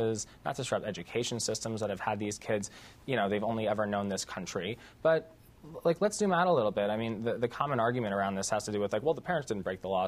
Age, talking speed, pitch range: 20-39, 275 wpm, 100-125 Hz